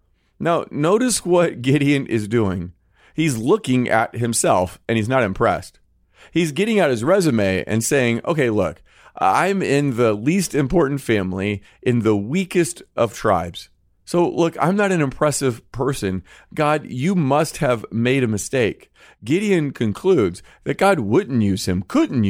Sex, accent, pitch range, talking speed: male, American, 95-150 Hz, 150 wpm